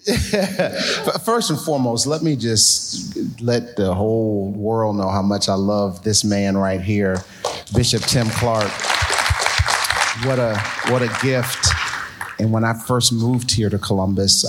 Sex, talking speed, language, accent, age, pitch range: male, 145 wpm, English, American, 40-59, 100-125 Hz